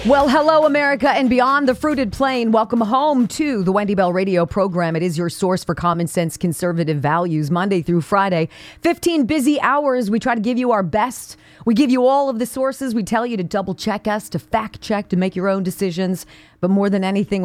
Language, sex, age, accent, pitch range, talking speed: English, female, 40-59, American, 160-225 Hz, 220 wpm